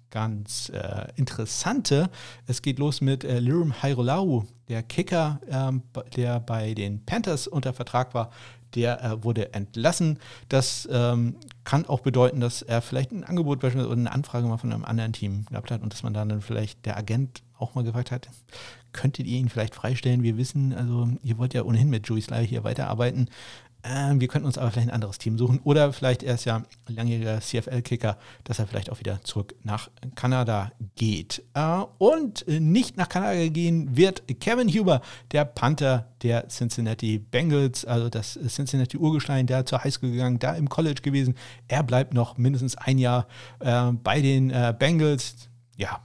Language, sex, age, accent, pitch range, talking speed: German, male, 50-69, German, 115-135 Hz, 180 wpm